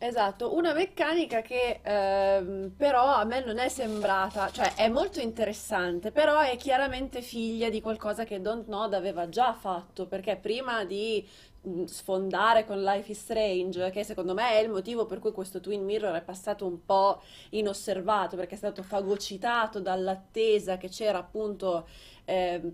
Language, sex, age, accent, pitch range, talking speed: Italian, female, 20-39, native, 190-220 Hz, 160 wpm